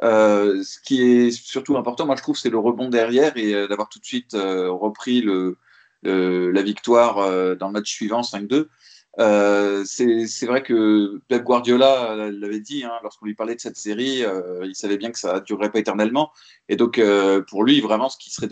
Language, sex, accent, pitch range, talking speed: French, male, French, 100-125 Hz, 215 wpm